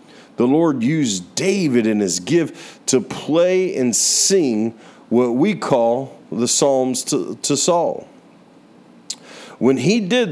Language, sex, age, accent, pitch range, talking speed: English, male, 50-69, American, 115-160 Hz, 130 wpm